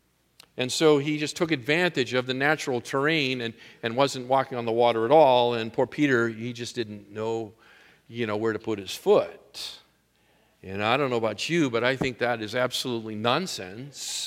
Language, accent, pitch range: English, American, 120-150 Hz